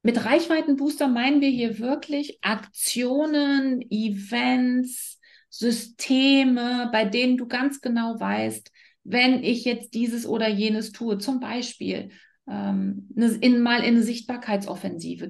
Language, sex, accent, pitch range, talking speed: German, female, German, 210-265 Hz, 115 wpm